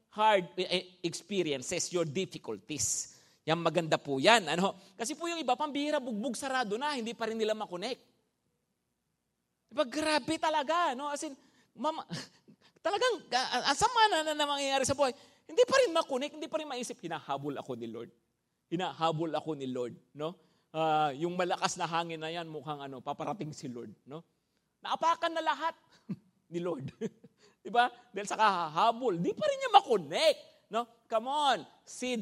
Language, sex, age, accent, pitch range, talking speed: English, male, 50-69, Filipino, 160-250 Hz, 150 wpm